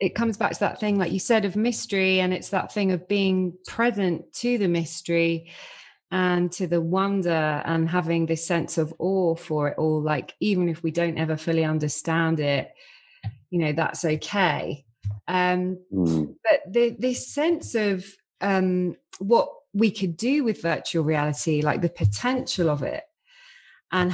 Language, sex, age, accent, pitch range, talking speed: English, female, 30-49, British, 165-210 Hz, 165 wpm